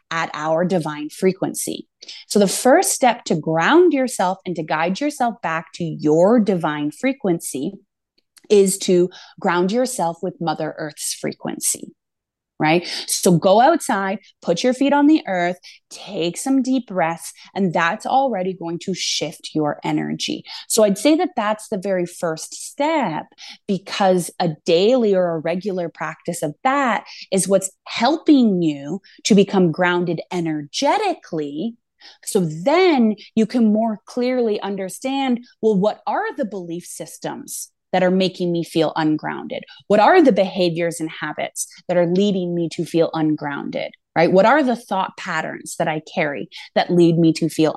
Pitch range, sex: 165-225 Hz, female